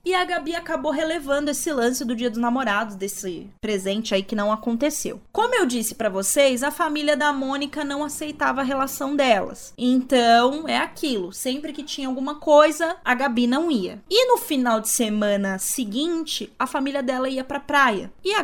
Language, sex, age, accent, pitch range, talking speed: Portuguese, female, 20-39, Brazilian, 225-310 Hz, 185 wpm